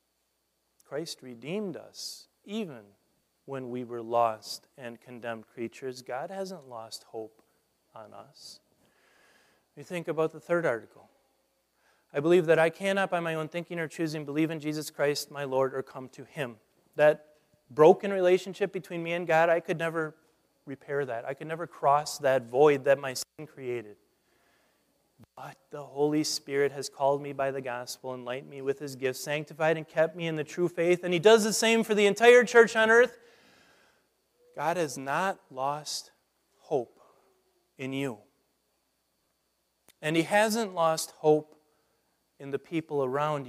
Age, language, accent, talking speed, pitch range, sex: 30-49, English, American, 160 wpm, 130-175 Hz, male